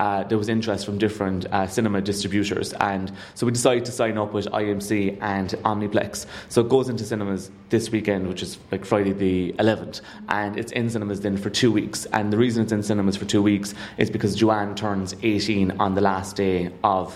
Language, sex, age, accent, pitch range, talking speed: English, male, 20-39, British, 100-115 Hz, 210 wpm